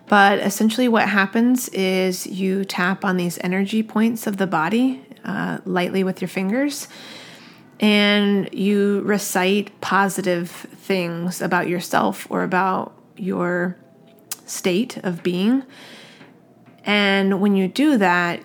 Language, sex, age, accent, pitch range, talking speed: English, female, 20-39, American, 180-205 Hz, 120 wpm